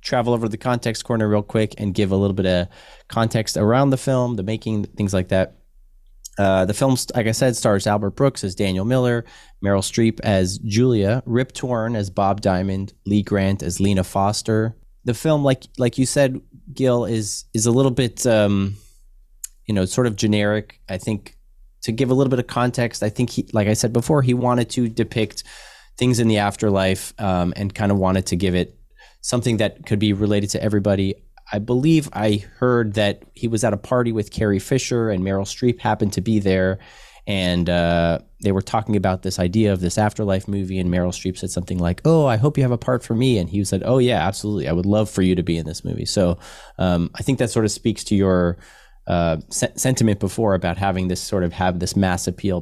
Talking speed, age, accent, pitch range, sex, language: 215 wpm, 20-39, American, 95-120 Hz, male, English